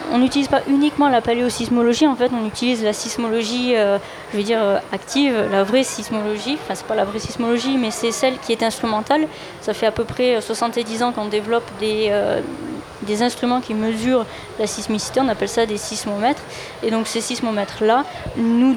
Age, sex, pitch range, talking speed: 20-39, female, 215-245 Hz, 190 wpm